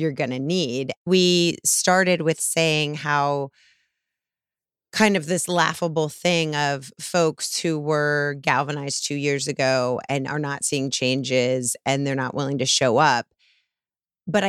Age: 30-49